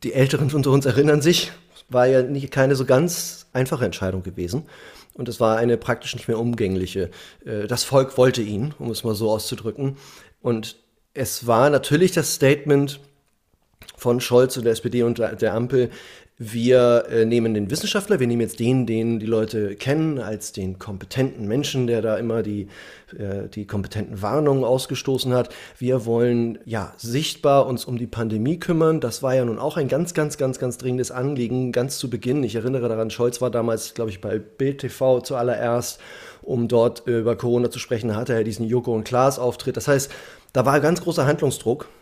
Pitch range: 115-140 Hz